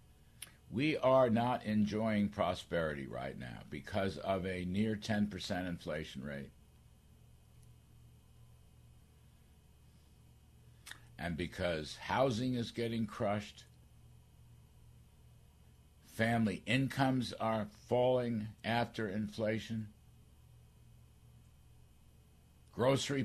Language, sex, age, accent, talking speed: English, male, 60-79, American, 70 wpm